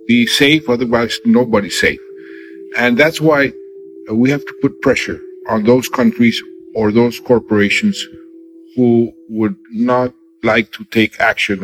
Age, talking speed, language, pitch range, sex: 50-69, 135 wpm, English, 100-155 Hz, male